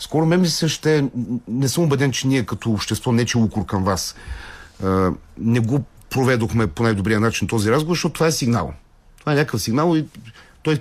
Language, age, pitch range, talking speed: Bulgarian, 40-59, 110-145 Hz, 185 wpm